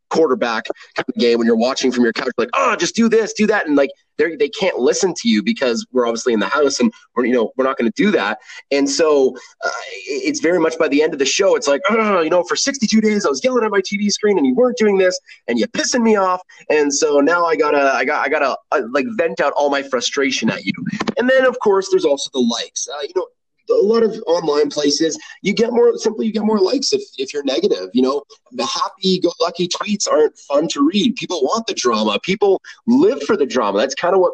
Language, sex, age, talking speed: English, male, 30-49, 255 wpm